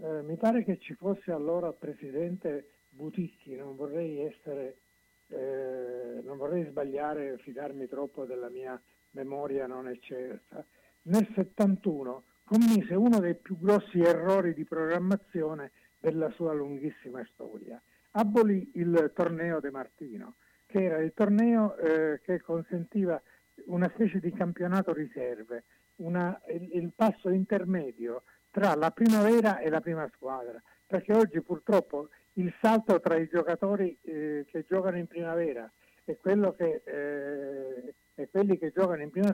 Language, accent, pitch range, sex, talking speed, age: Italian, native, 150-195 Hz, male, 125 wpm, 60-79